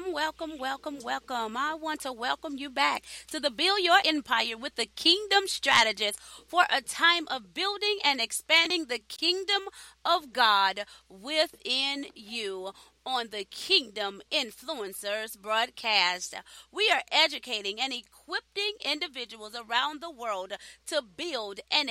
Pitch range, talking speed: 215-310 Hz, 130 wpm